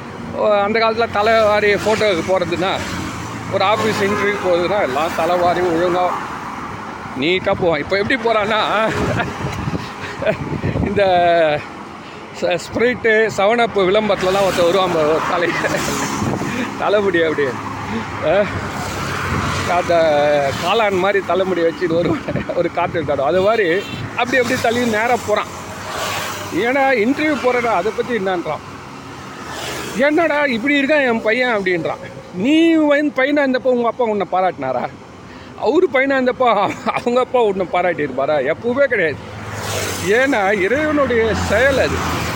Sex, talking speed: male, 105 wpm